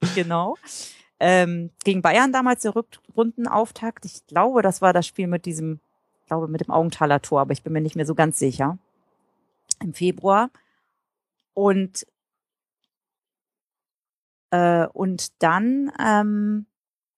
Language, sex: German, female